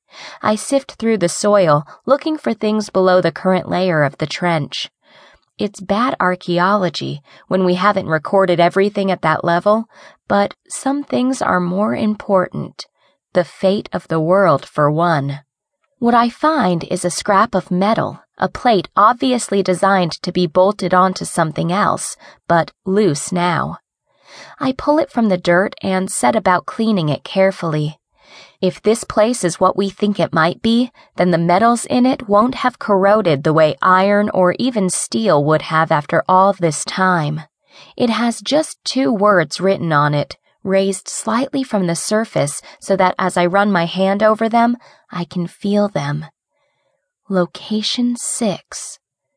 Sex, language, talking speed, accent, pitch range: female, English, 160 wpm, American, 175-225 Hz